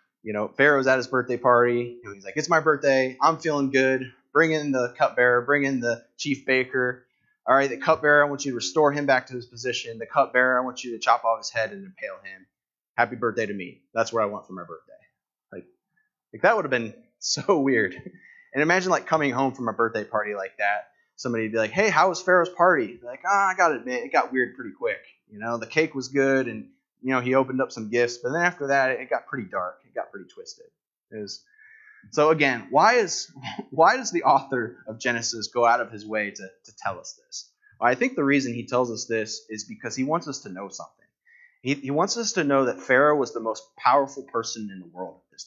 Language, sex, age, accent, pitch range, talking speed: English, male, 20-39, American, 120-170 Hz, 245 wpm